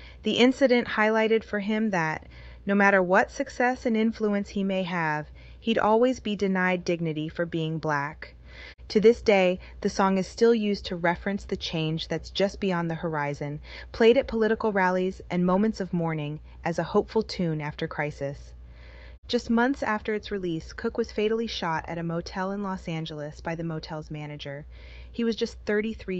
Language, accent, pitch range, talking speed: English, American, 160-210 Hz, 175 wpm